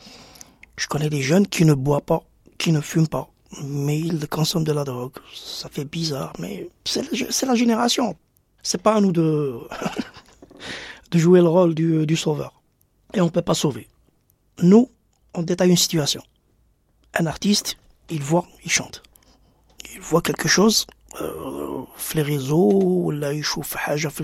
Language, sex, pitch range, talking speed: French, male, 145-175 Hz, 165 wpm